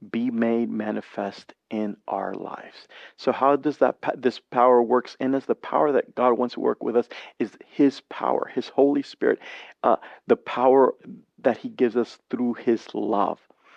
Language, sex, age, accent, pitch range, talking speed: English, male, 40-59, American, 115-135 Hz, 175 wpm